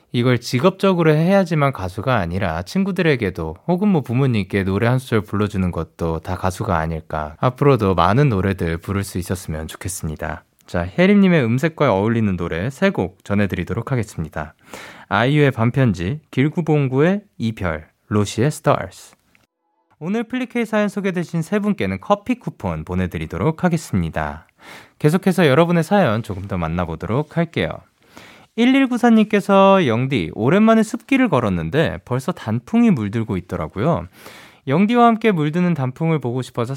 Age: 20-39